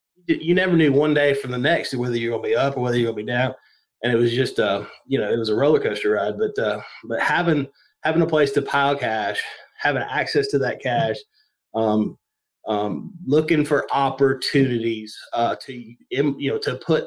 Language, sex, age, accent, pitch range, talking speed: English, male, 30-49, American, 120-155 Hz, 205 wpm